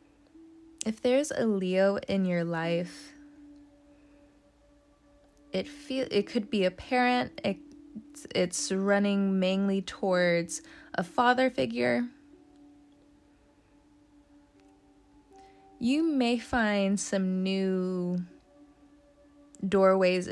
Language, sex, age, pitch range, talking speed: English, female, 20-39, 185-290 Hz, 85 wpm